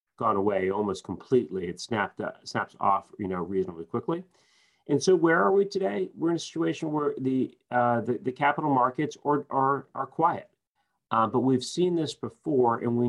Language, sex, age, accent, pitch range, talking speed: English, male, 40-59, American, 115-140 Hz, 195 wpm